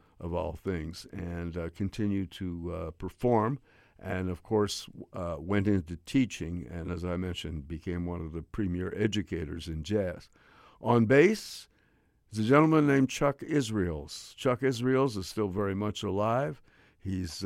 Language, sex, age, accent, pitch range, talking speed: English, male, 60-79, American, 90-120 Hz, 150 wpm